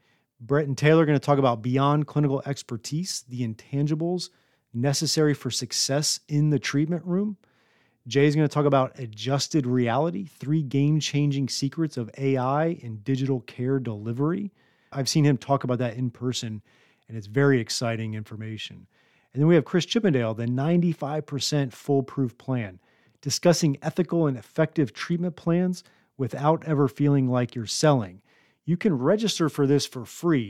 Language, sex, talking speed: English, male, 155 wpm